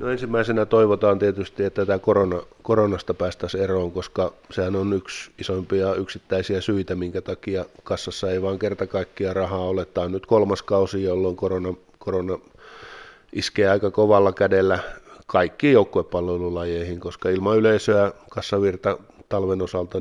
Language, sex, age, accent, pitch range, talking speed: Finnish, male, 20-39, native, 90-100 Hz, 140 wpm